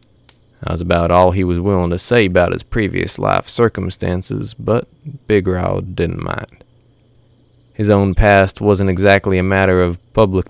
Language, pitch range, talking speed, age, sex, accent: English, 90-115 Hz, 160 wpm, 20-39, male, American